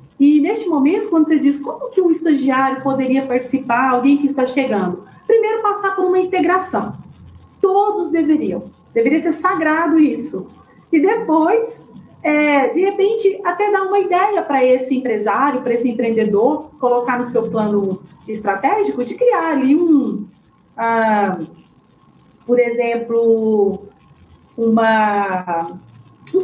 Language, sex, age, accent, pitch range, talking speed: Portuguese, female, 40-59, Brazilian, 230-330 Hz, 125 wpm